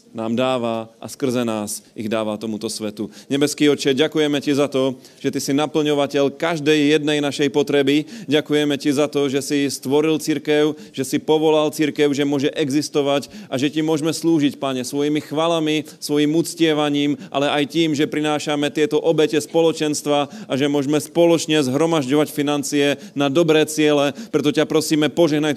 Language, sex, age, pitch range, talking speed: Slovak, male, 30-49, 140-155 Hz, 160 wpm